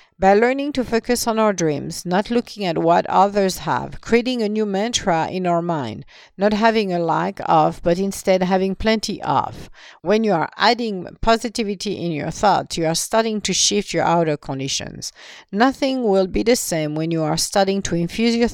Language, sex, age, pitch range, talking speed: English, female, 50-69, 165-220 Hz, 190 wpm